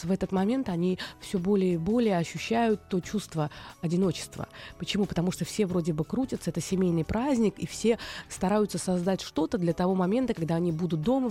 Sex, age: female, 20-39